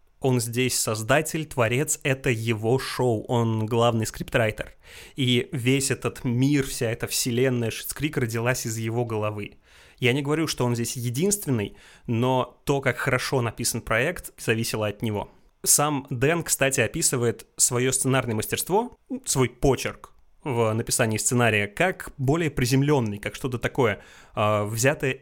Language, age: Russian, 20-39